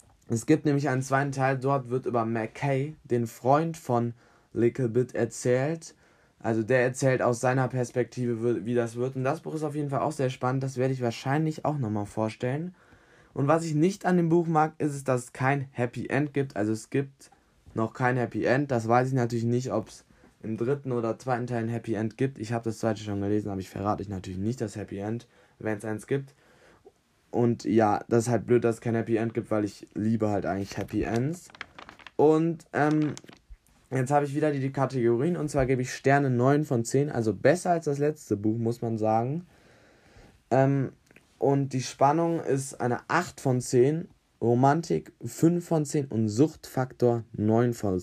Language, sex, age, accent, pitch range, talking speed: German, male, 10-29, German, 115-145 Hz, 200 wpm